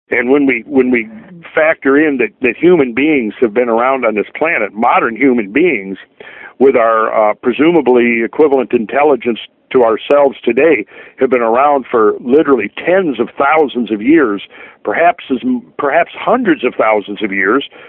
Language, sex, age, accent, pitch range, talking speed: English, male, 50-69, American, 115-155 Hz, 160 wpm